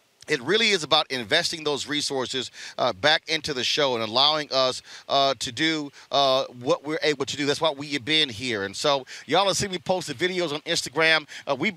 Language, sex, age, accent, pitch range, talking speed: English, male, 30-49, American, 140-165 Hz, 215 wpm